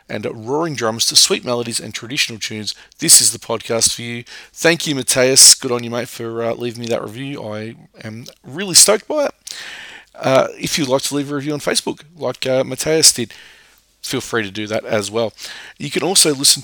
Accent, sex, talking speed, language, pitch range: Australian, male, 215 wpm, English, 110-135 Hz